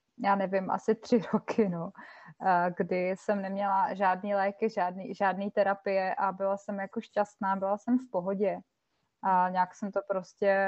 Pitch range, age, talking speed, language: 195-215 Hz, 20-39, 155 wpm, Czech